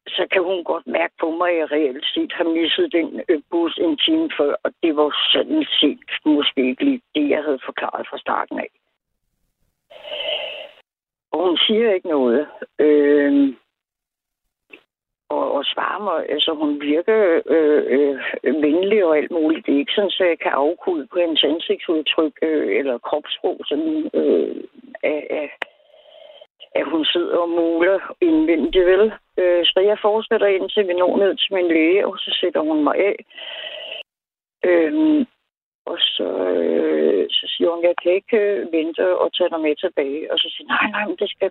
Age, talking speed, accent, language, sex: 60-79, 170 wpm, native, Danish, female